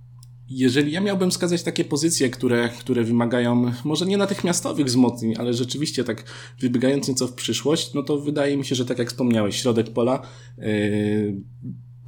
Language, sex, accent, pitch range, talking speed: Polish, male, native, 115-135 Hz, 160 wpm